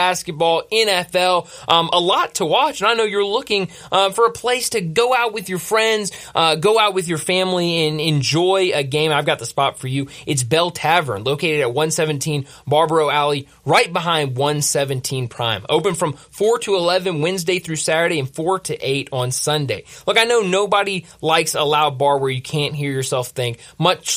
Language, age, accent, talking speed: English, 20-39, American, 195 wpm